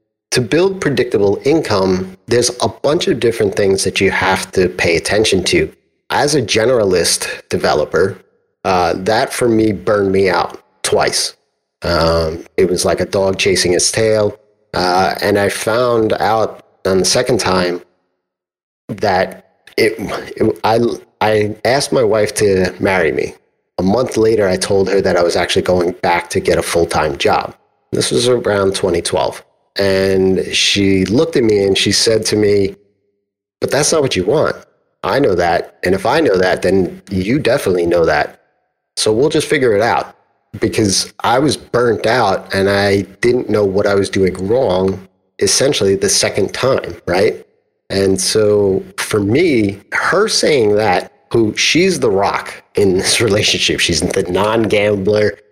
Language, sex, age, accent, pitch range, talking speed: English, male, 30-49, American, 95-110 Hz, 160 wpm